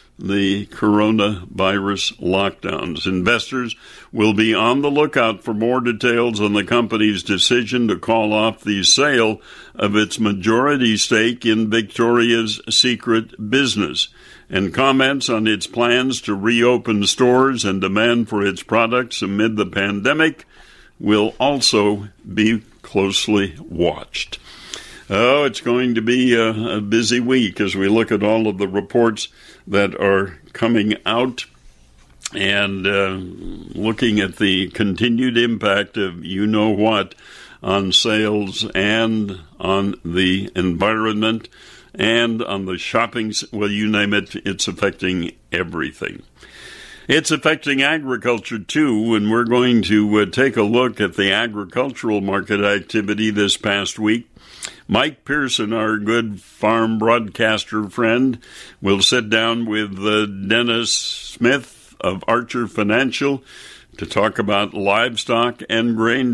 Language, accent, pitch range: English, American, 100-120 Hz